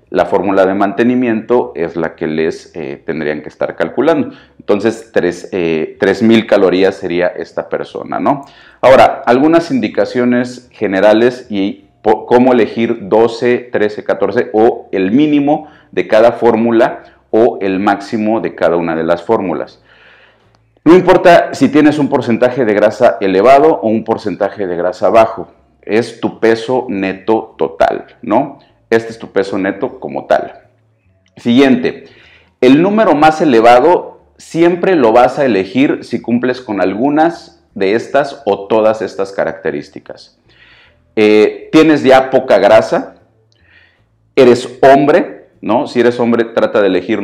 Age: 40-59